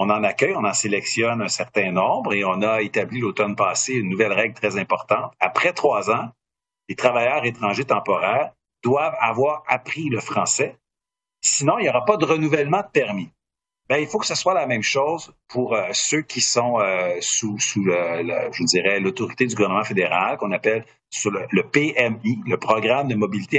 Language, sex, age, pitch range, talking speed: French, male, 50-69, 110-150 Hz, 180 wpm